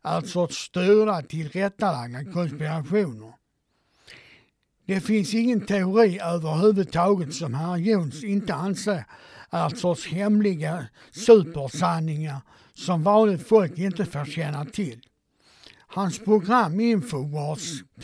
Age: 60-79